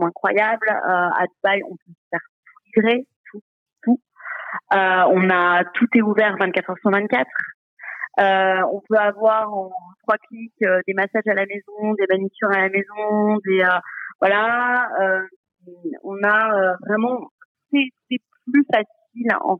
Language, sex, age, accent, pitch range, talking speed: French, female, 30-49, French, 185-235 Hz, 155 wpm